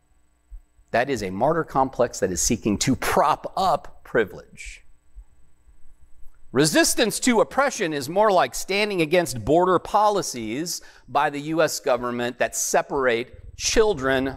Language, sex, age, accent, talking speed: English, male, 40-59, American, 120 wpm